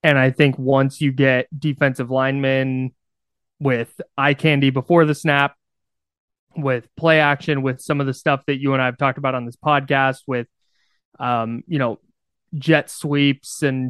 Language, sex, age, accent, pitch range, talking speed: English, male, 20-39, American, 130-150 Hz, 170 wpm